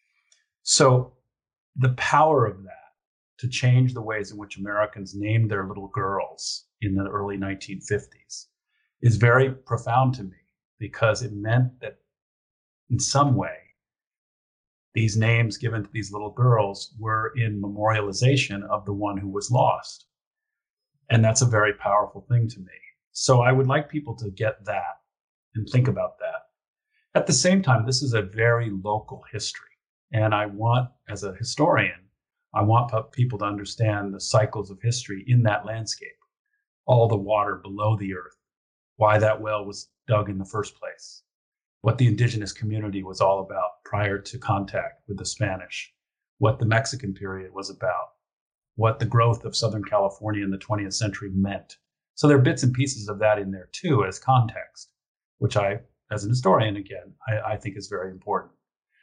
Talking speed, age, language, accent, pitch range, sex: 170 wpm, 50-69, English, American, 100-125 Hz, male